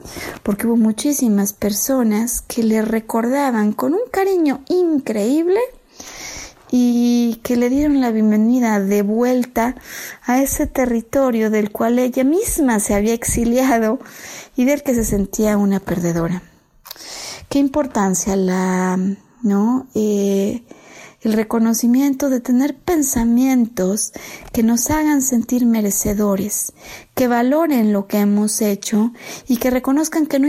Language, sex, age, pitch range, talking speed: Spanish, female, 30-49, 215-270 Hz, 120 wpm